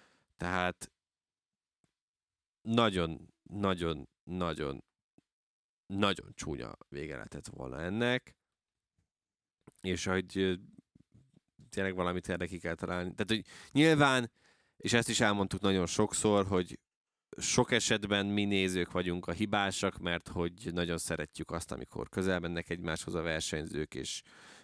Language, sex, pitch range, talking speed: Hungarian, male, 85-100 Hz, 100 wpm